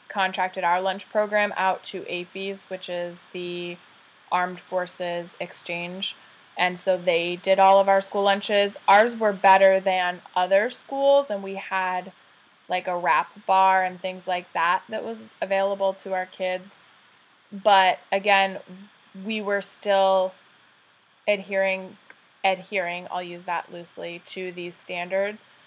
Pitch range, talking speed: 185-200 Hz, 140 wpm